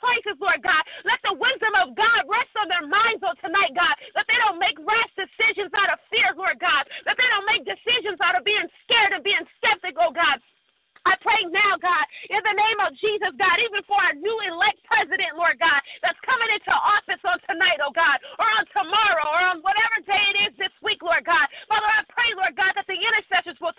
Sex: female